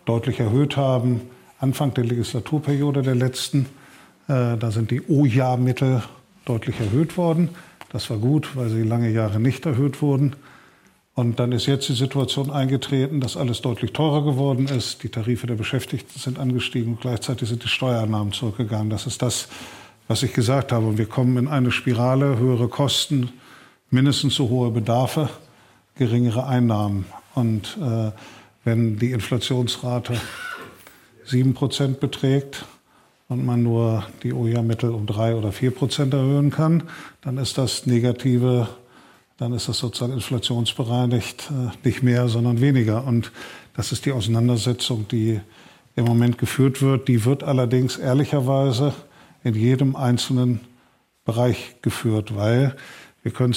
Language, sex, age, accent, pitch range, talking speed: German, male, 50-69, German, 120-135 Hz, 140 wpm